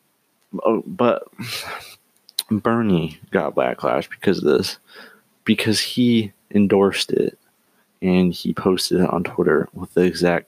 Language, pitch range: English, 90-115 Hz